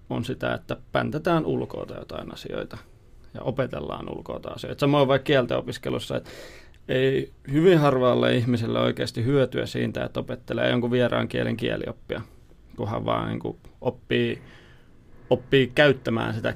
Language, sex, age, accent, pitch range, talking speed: Finnish, male, 30-49, native, 110-135 Hz, 125 wpm